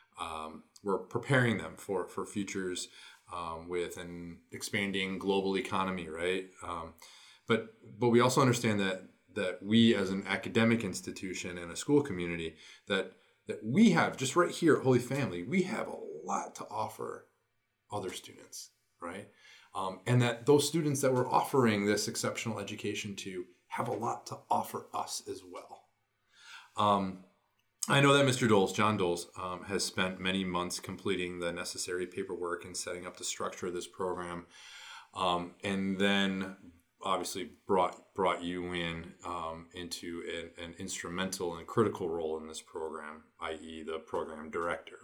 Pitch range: 90-115 Hz